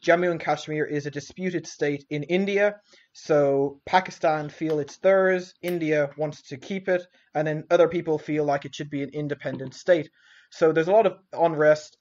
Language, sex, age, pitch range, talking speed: English, male, 20-39, 145-175 Hz, 185 wpm